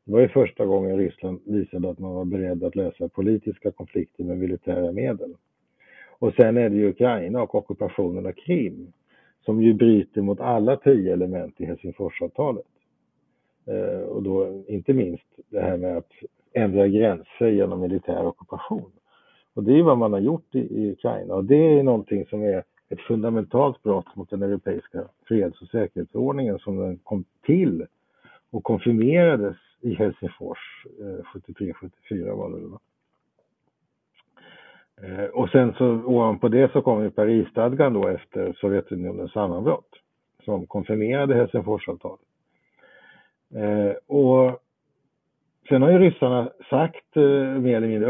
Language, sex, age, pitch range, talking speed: Swedish, male, 50-69, 100-130 Hz, 150 wpm